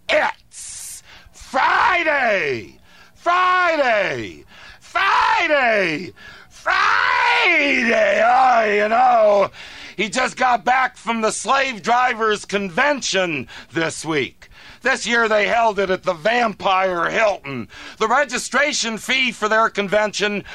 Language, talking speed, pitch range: English, 100 wpm, 185-235 Hz